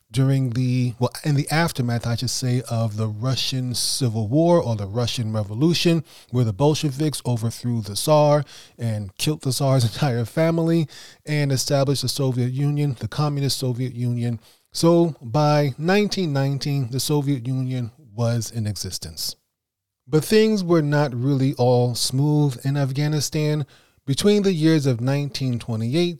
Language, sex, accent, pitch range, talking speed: English, male, American, 120-150 Hz, 140 wpm